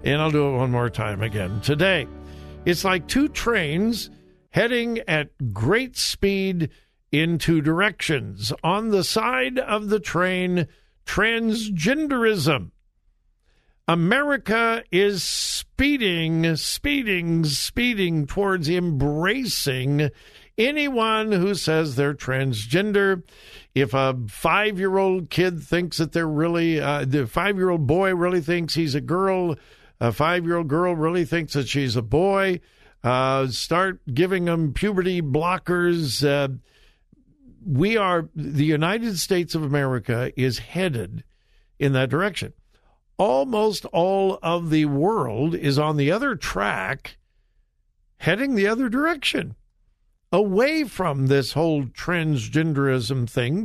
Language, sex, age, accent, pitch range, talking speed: English, male, 60-79, American, 140-195 Hz, 115 wpm